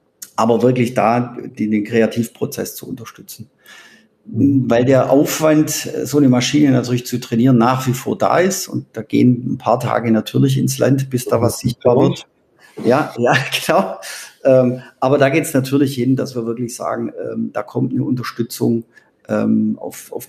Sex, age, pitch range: male, 50-69, 115-130 Hz